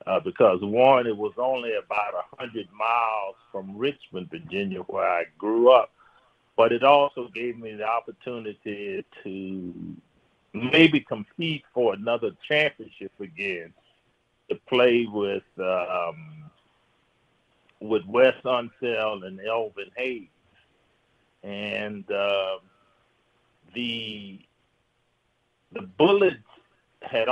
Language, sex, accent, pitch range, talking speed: English, male, American, 105-130 Hz, 105 wpm